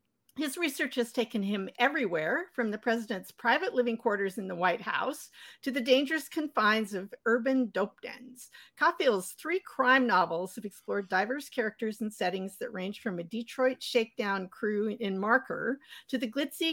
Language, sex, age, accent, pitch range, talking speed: English, female, 50-69, American, 200-255 Hz, 165 wpm